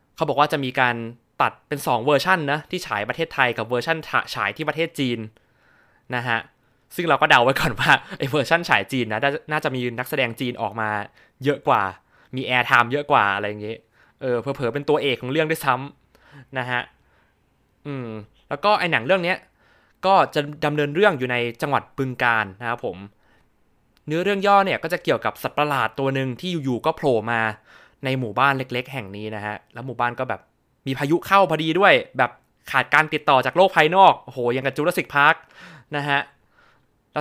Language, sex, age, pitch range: Thai, male, 20-39, 120-155 Hz